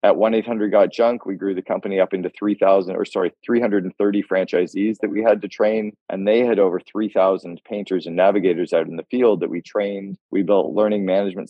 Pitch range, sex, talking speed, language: 95-105 Hz, male, 195 wpm, English